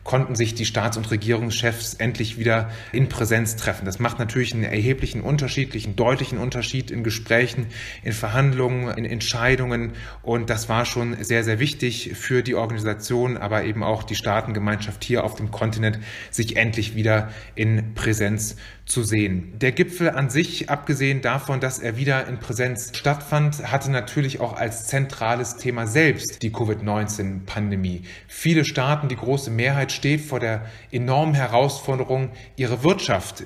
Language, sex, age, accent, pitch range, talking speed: German, male, 30-49, German, 110-135 Hz, 150 wpm